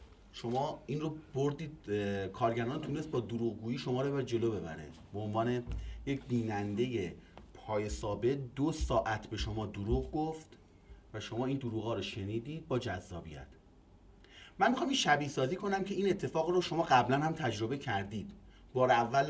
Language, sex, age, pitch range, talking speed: Persian, male, 30-49, 100-150 Hz, 160 wpm